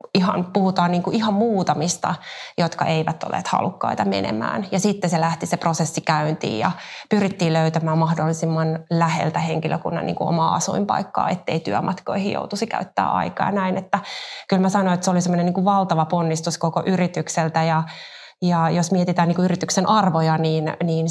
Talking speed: 155 wpm